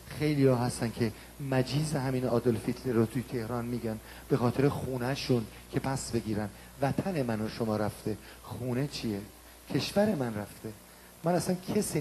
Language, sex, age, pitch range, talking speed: Persian, male, 40-59, 110-150 Hz, 140 wpm